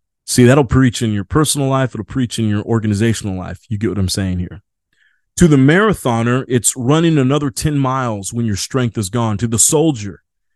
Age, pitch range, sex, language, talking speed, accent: 30-49, 115-150 Hz, male, English, 200 wpm, American